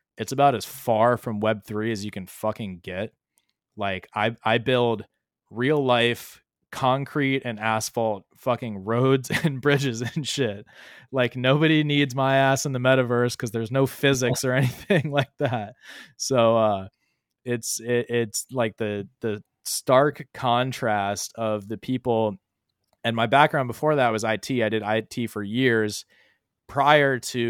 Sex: male